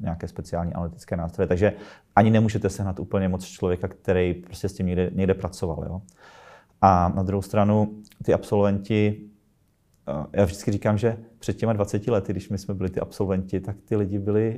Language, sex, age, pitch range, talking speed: Czech, male, 30-49, 90-105 Hz, 175 wpm